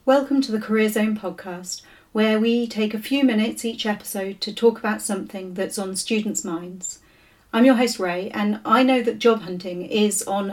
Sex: female